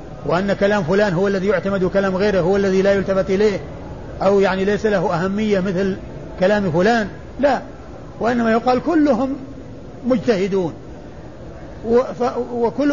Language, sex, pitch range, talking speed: Arabic, male, 190-230 Hz, 125 wpm